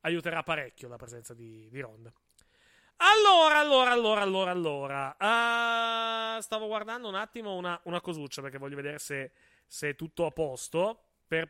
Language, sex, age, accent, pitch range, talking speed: Italian, male, 30-49, native, 140-190 Hz, 155 wpm